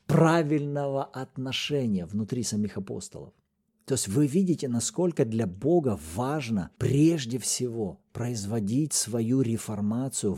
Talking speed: 105 wpm